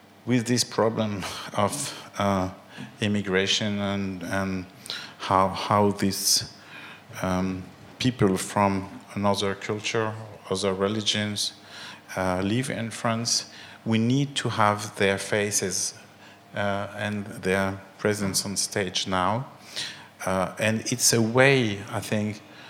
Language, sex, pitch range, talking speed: Swedish, male, 95-110 Hz, 110 wpm